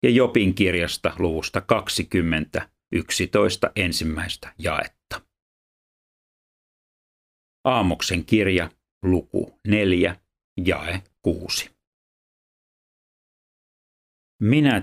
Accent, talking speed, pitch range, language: native, 55 wpm, 85-105 Hz, Finnish